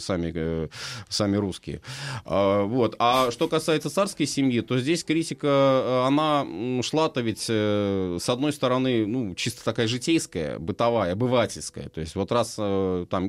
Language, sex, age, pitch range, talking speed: Russian, male, 30-49, 100-140 Hz, 130 wpm